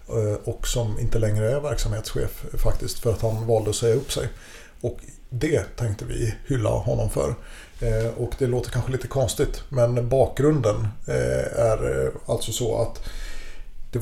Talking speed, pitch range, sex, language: 150 wpm, 110-125 Hz, male, Swedish